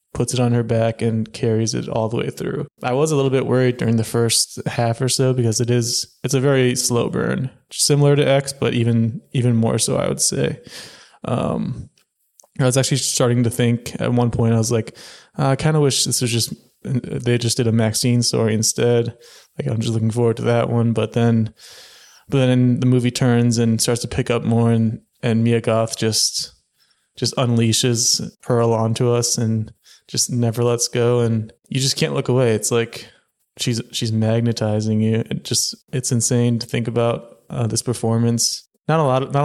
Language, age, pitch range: English, 20-39, 115-130 Hz